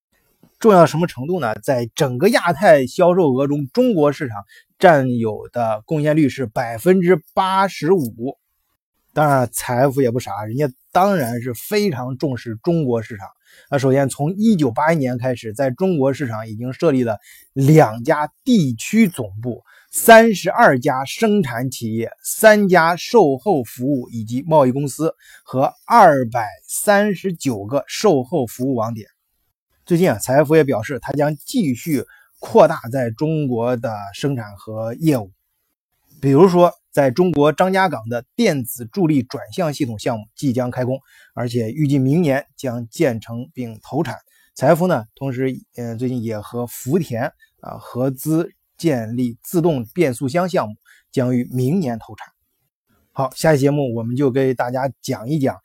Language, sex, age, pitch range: Chinese, male, 20-39, 120-160 Hz